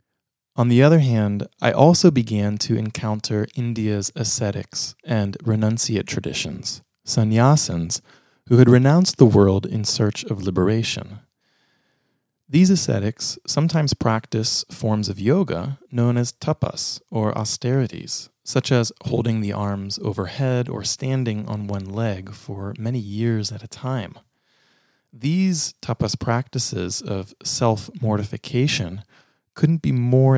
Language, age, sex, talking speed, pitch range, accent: English, 30-49, male, 120 wpm, 105-130 Hz, American